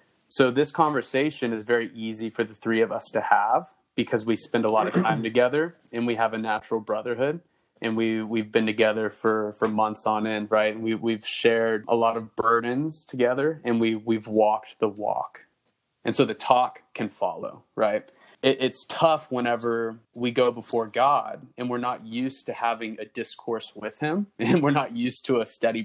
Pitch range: 110-130 Hz